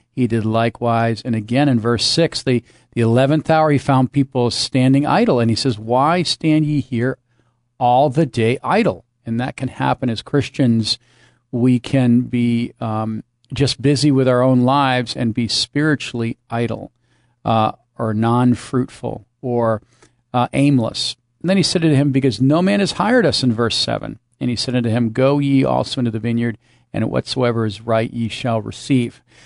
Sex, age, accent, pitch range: male, 50-69, American, 115-135 Hz